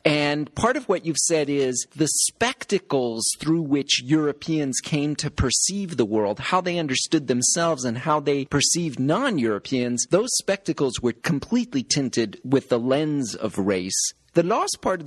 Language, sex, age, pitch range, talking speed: English, male, 40-59, 120-160 Hz, 160 wpm